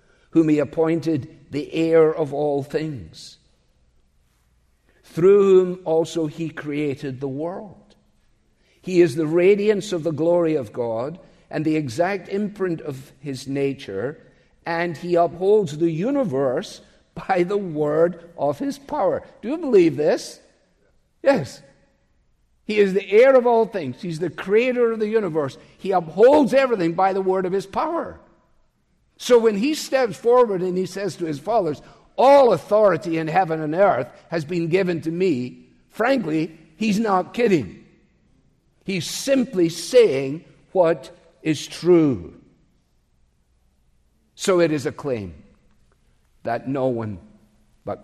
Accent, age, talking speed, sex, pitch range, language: American, 50-69, 135 wpm, male, 135-190 Hz, English